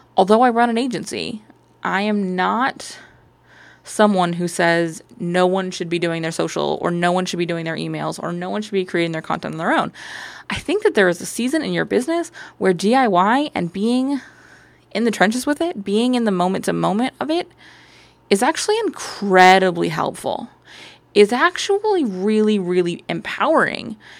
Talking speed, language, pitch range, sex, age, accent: 180 wpm, English, 180-245 Hz, female, 20-39, American